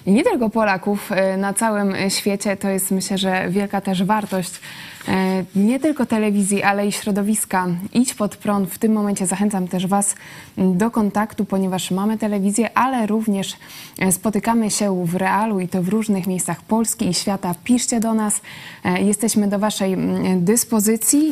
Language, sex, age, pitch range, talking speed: Polish, female, 20-39, 200-235 Hz, 150 wpm